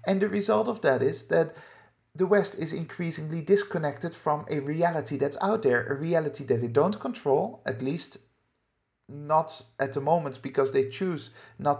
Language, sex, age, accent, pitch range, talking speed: English, male, 50-69, Dutch, 135-170 Hz, 175 wpm